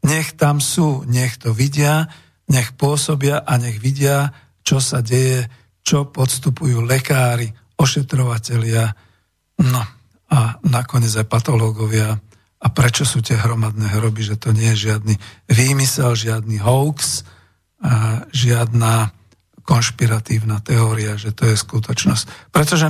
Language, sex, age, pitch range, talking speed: Slovak, male, 50-69, 115-140 Hz, 120 wpm